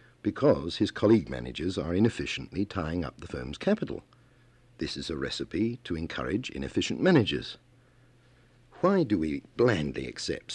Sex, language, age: male, English, 60-79